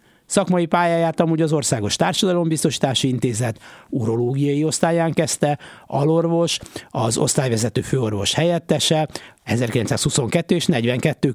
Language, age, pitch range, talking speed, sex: Hungarian, 60-79, 110-155 Hz, 95 wpm, male